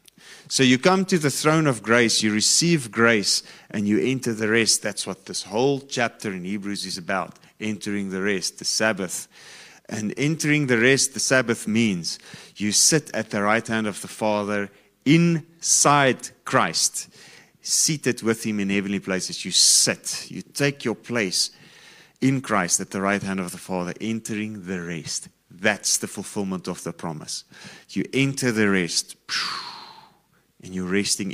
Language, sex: English, male